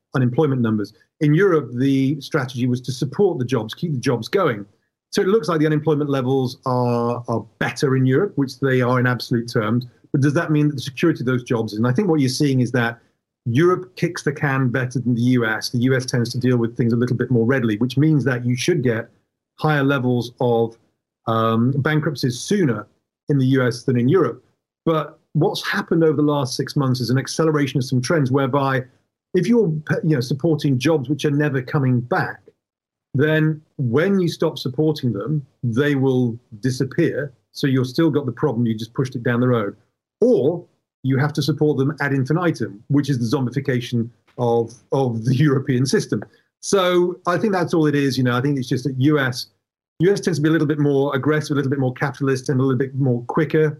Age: 40-59